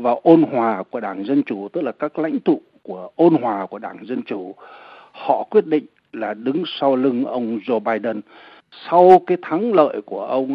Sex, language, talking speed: male, Vietnamese, 200 wpm